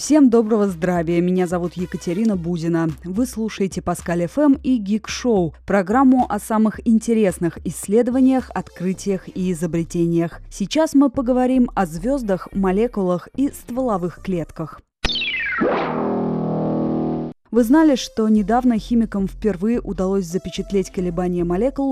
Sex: female